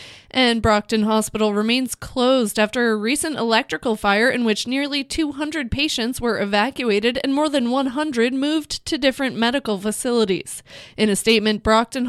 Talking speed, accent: 150 wpm, American